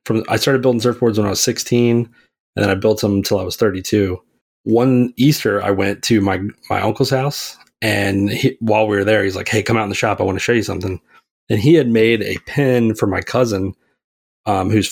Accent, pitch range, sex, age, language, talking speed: American, 100-115 Hz, male, 30-49, English, 235 wpm